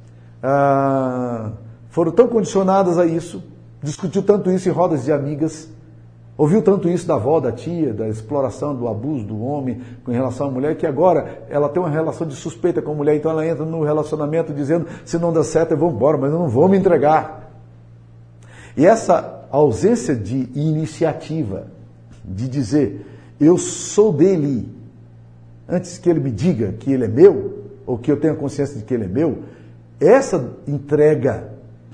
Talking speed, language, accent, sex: 170 wpm, Portuguese, Brazilian, male